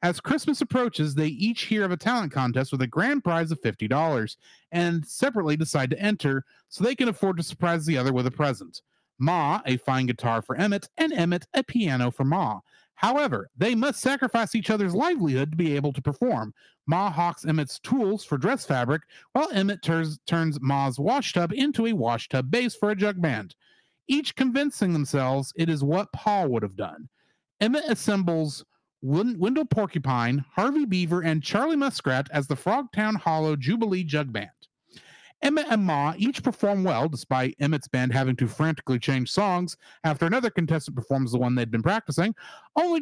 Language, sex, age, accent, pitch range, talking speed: English, male, 40-59, American, 140-220 Hz, 175 wpm